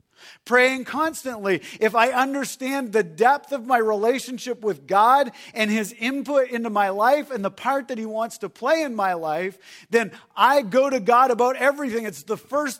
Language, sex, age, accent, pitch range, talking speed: English, male, 40-59, American, 215-280 Hz, 185 wpm